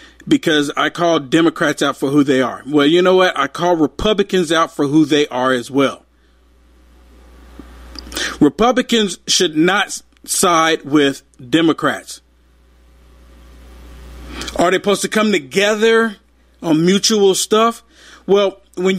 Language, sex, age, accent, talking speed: English, male, 50-69, American, 125 wpm